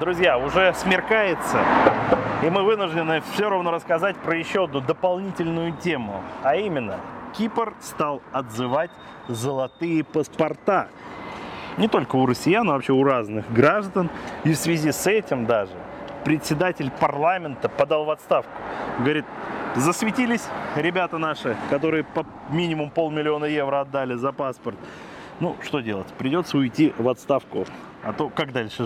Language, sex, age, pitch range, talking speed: Russian, male, 30-49, 135-170 Hz, 135 wpm